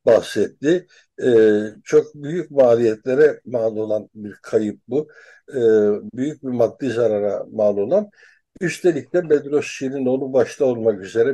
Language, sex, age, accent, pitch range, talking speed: Turkish, male, 60-79, native, 115-165 Hz, 125 wpm